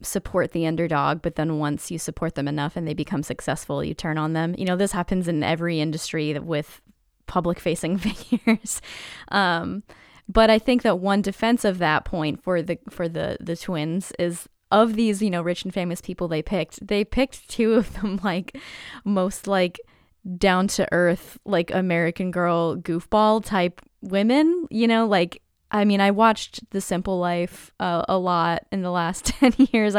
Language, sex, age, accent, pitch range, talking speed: English, female, 10-29, American, 170-215 Hz, 180 wpm